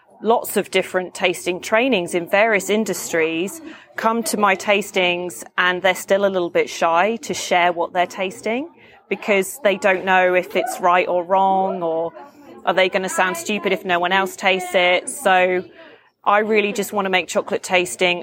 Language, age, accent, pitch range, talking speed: English, 30-49, British, 175-205 Hz, 180 wpm